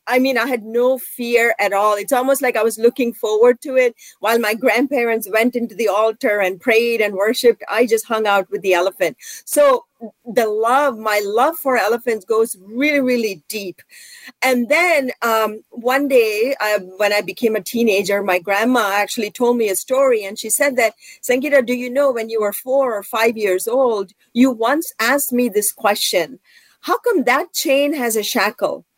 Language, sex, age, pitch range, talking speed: English, female, 40-59, 215-275 Hz, 190 wpm